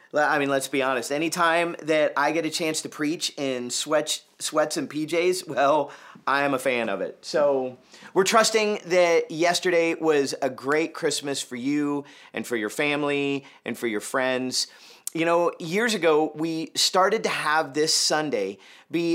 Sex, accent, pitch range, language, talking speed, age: male, American, 140-175 Hz, English, 170 wpm, 40-59